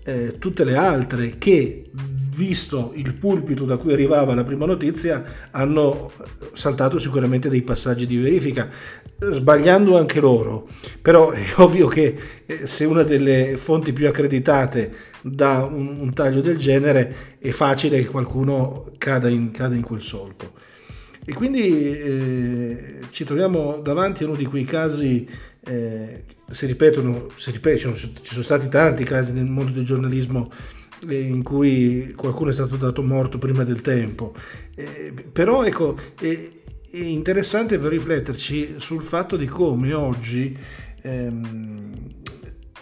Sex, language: male, Italian